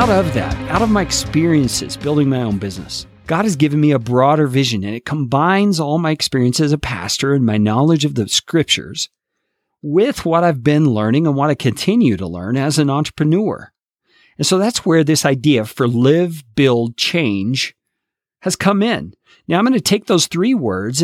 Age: 50-69